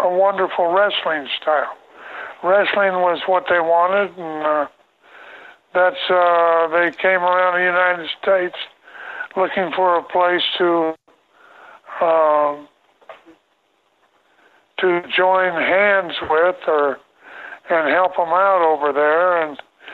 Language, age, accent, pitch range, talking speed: English, 60-79, American, 160-195 Hz, 110 wpm